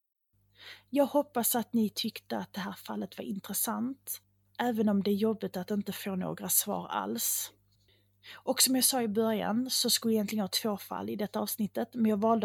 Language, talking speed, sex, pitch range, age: English, 200 wpm, female, 185-230 Hz, 30-49